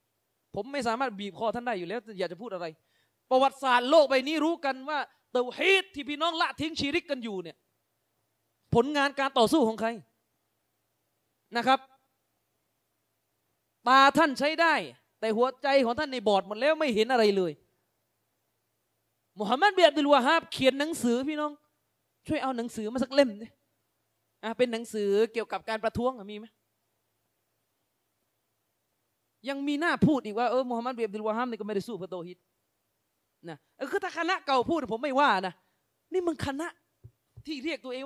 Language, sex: Thai, male